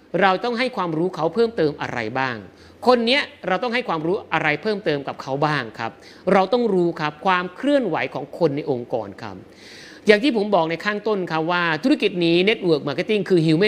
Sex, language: male, Thai